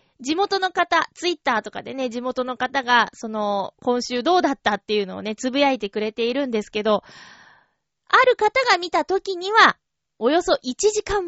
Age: 20-39